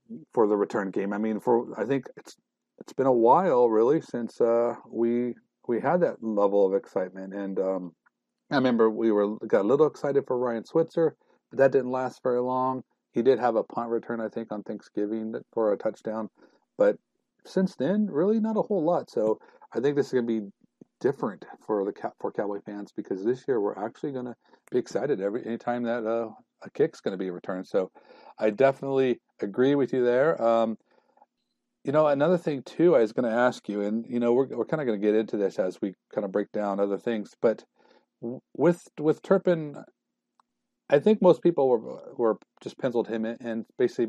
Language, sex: English, male